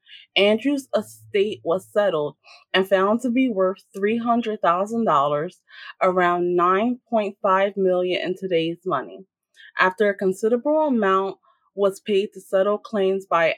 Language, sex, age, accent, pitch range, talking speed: English, female, 20-39, American, 180-220 Hz, 110 wpm